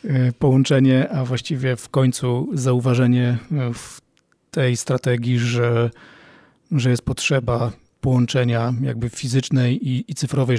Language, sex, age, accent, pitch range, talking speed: Polish, male, 40-59, native, 125-140 Hz, 110 wpm